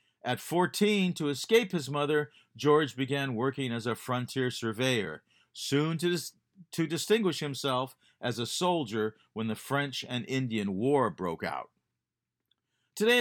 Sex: male